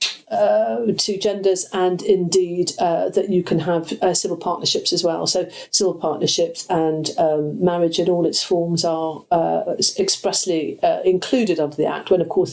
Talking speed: 170 wpm